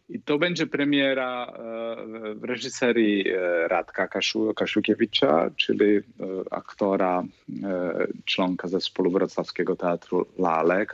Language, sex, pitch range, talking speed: Polish, male, 110-125 Hz, 90 wpm